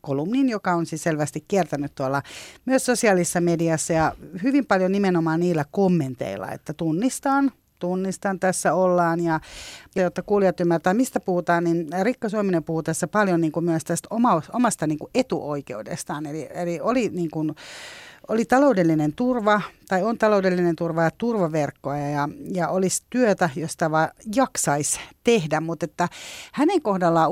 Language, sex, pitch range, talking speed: Finnish, female, 160-210 Hz, 140 wpm